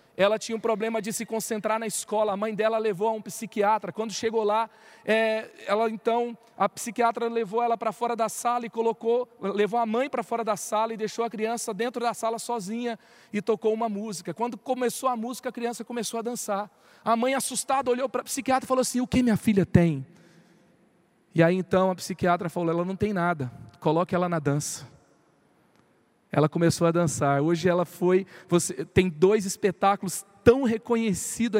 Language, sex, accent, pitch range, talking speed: Portuguese, male, Brazilian, 175-225 Hz, 190 wpm